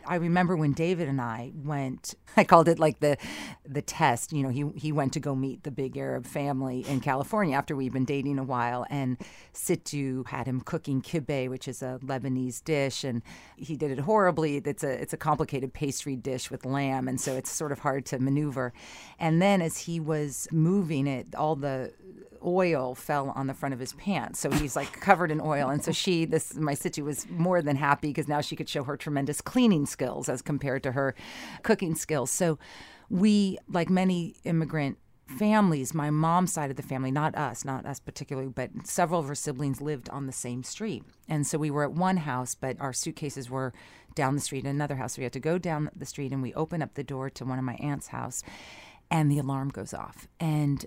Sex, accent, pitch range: female, American, 135-160 Hz